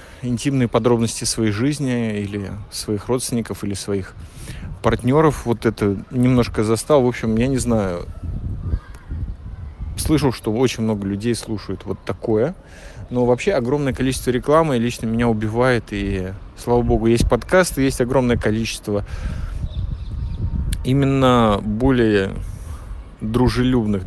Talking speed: 115 wpm